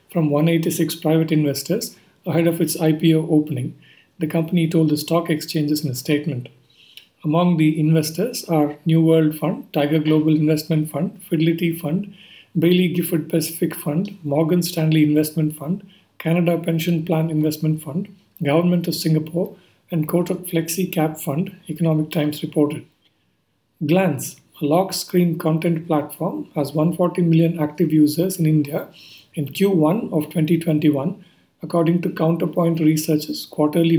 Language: English